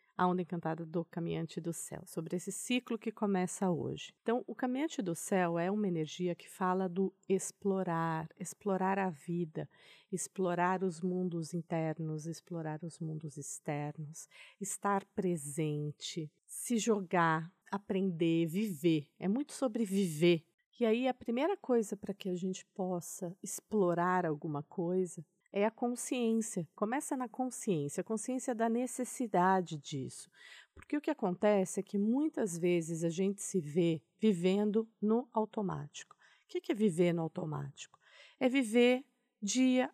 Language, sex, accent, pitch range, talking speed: Portuguese, female, Brazilian, 170-220 Hz, 140 wpm